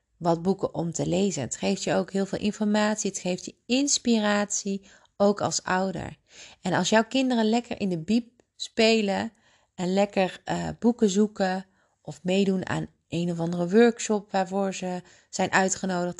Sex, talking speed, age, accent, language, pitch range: female, 165 wpm, 30-49, Dutch, Dutch, 175-220 Hz